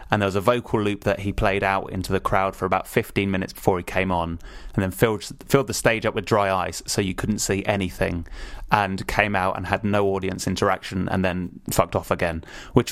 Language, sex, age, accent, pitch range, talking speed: English, male, 20-39, British, 95-115 Hz, 230 wpm